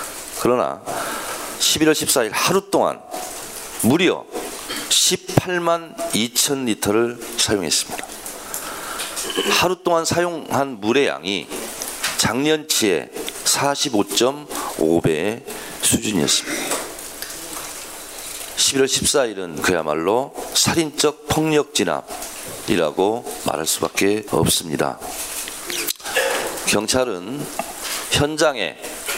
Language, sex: Korean, male